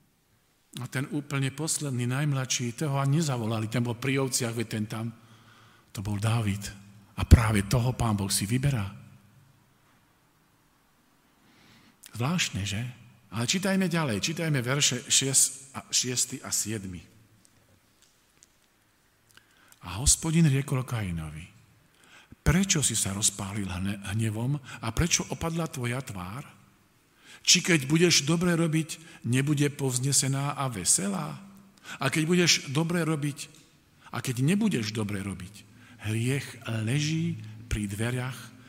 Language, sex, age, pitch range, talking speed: Slovak, male, 50-69, 105-140 Hz, 115 wpm